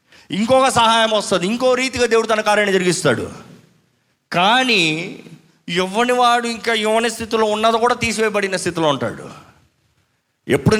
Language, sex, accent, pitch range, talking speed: Telugu, male, native, 180-230 Hz, 115 wpm